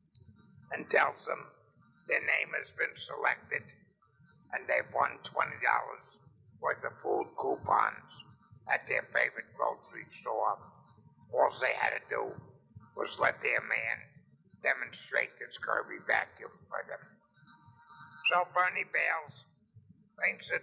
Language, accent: English, American